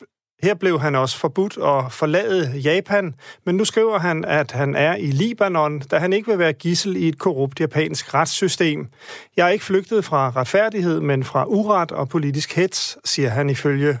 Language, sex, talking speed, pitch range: Danish, male, 185 wpm, 140-185 Hz